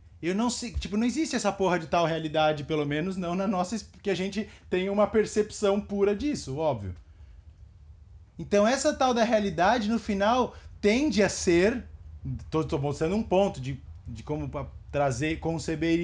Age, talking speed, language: 20-39, 170 wpm, Portuguese